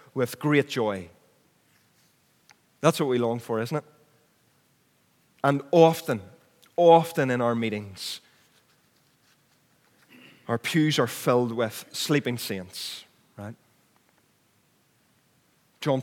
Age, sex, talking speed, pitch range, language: 30-49, male, 95 wpm, 110-140 Hz, English